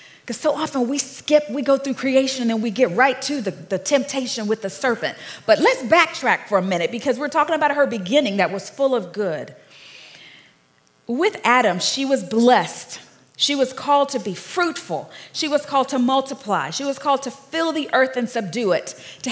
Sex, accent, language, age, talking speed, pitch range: female, American, English, 40-59, 200 wpm, 195-280 Hz